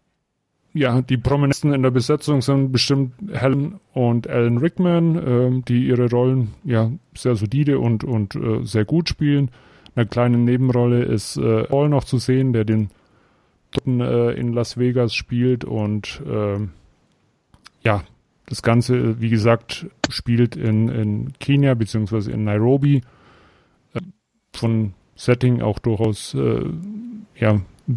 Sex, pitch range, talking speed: male, 115-135 Hz, 135 wpm